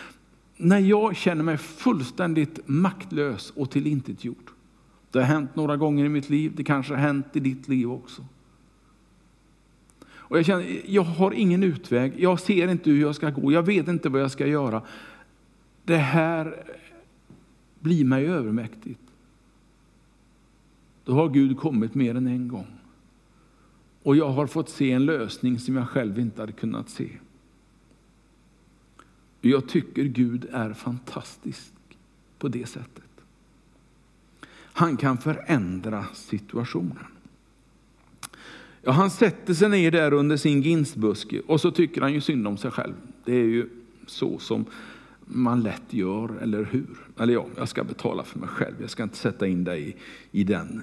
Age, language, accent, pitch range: 60-79, Swedish, Norwegian, 120-160 Hz